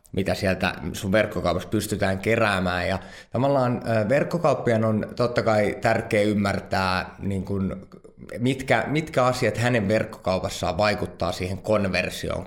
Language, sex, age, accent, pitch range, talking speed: Finnish, male, 20-39, native, 95-115 Hz, 105 wpm